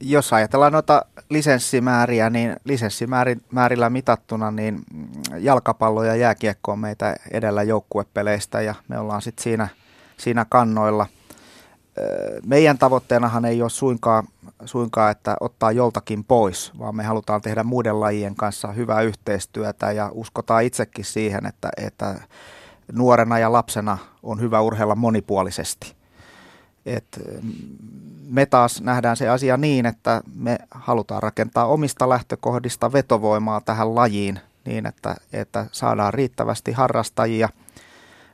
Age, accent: 30-49, native